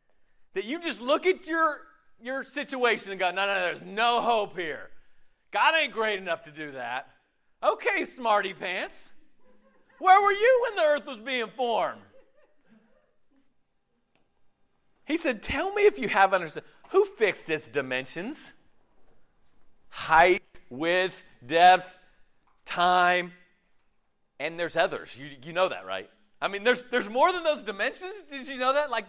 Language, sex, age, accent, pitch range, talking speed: English, male, 40-59, American, 180-255 Hz, 150 wpm